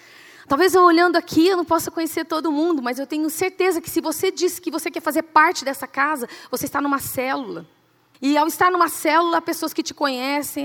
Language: Portuguese